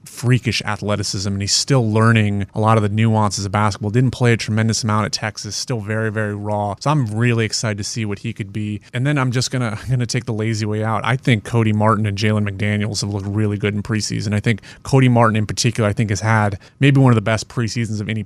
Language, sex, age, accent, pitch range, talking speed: English, male, 30-49, American, 105-120 Hz, 250 wpm